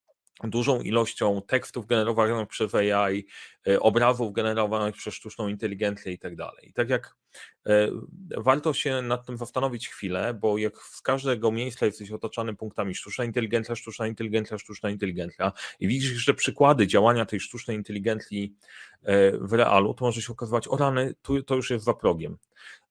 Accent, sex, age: native, male, 30-49